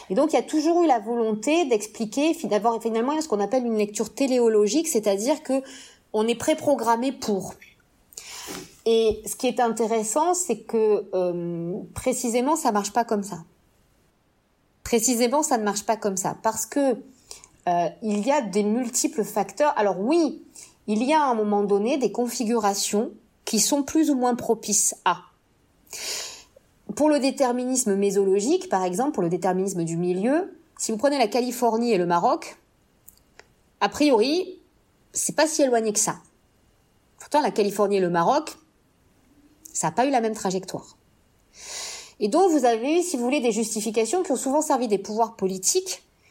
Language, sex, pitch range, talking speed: French, female, 200-275 Hz, 165 wpm